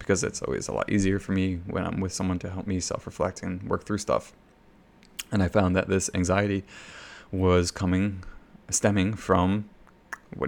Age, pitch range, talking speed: 20-39, 90-100 Hz, 180 wpm